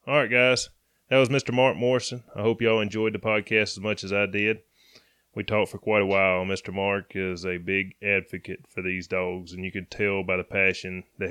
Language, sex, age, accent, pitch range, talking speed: English, male, 20-39, American, 95-110 Hz, 225 wpm